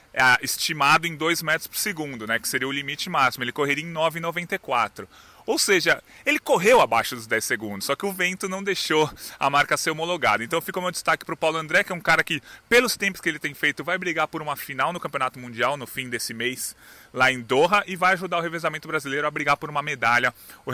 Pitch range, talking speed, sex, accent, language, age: 135-185 Hz, 235 wpm, male, Brazilian, Portuguese, 20-39